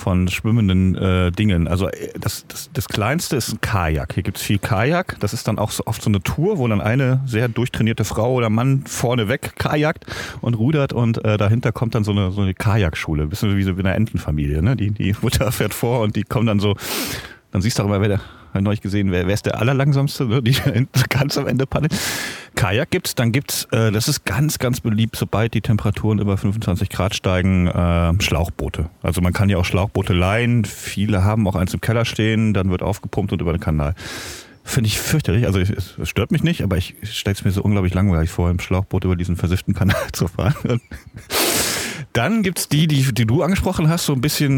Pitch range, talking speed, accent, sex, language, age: 95-125 Hz, 225 wpm, German, male, German, 40-59